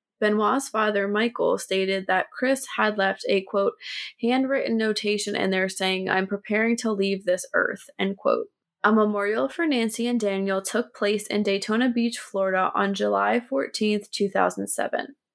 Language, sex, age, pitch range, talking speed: English, female, 20-39, 195-235 Hz, 150 wpm